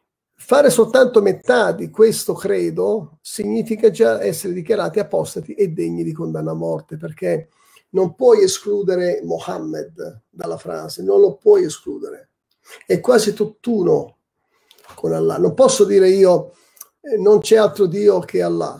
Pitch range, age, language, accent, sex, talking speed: 185-265 Hz, 40-59, Italian, native, male, 135 wpm